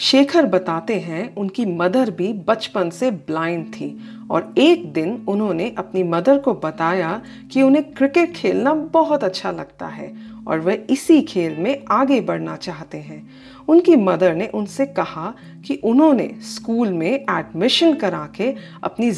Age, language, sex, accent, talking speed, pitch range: 40-59, Hindi, female, native, 150 wpm, 180-275 Hz